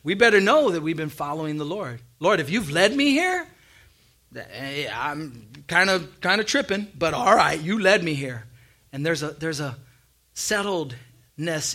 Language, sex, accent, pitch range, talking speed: English, male, American, 150-195 Hz, 175 wpm